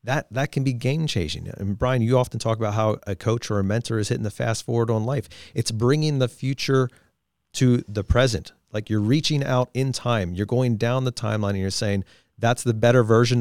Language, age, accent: English, 40-59, American